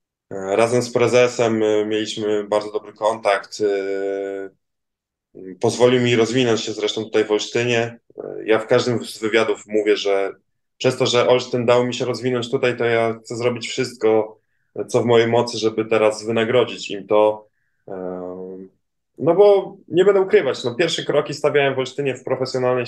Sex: male